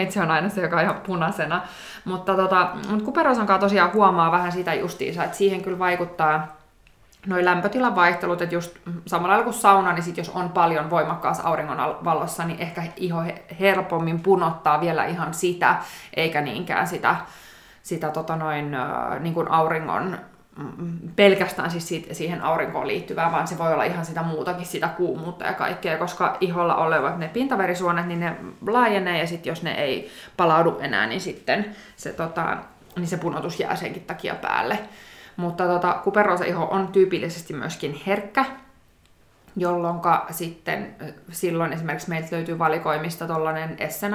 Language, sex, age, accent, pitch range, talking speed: Finnish, female, 20-39, native, 165-190 Hz, 150 wpm